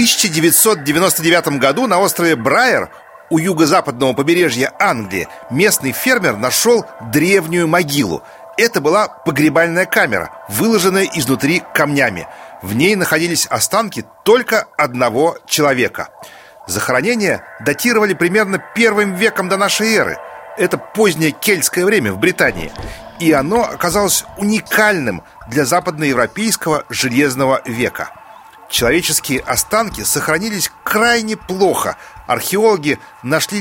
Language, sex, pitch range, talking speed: Russian, male, 150-205 Hz, 105 wpm